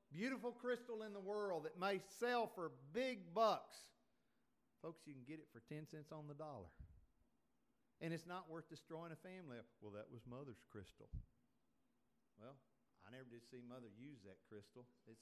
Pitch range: 135-205 Hz